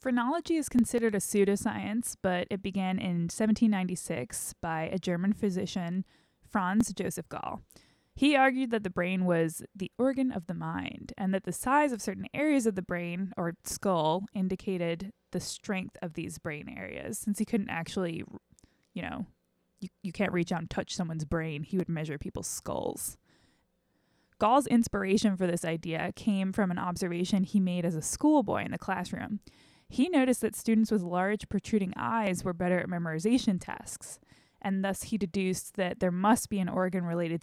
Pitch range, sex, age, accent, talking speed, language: 175-220 Hz, female, 20-39, American, 175 wpm, English